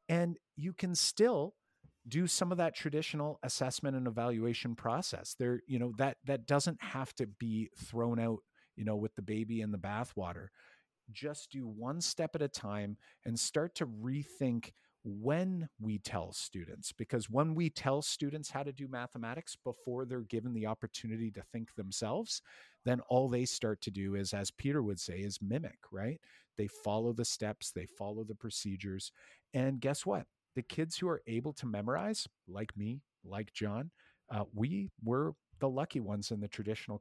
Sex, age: male, 50-69